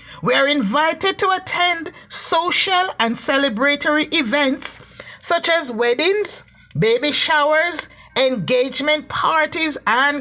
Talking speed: 100 wpm